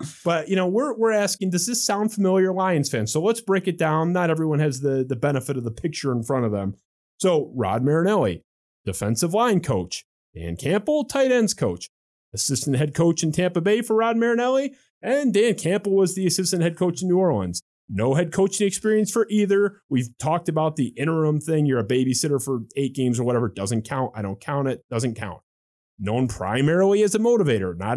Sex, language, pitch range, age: male, English, 130-185 Hz, 30-49